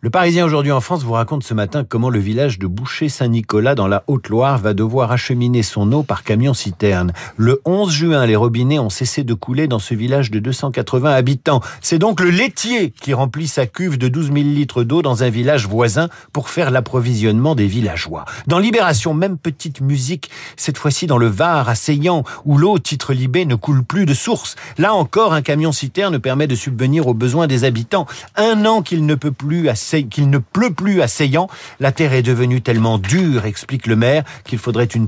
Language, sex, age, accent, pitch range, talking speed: French, male, 50-69, French, 120-170 Hz, 200 wpm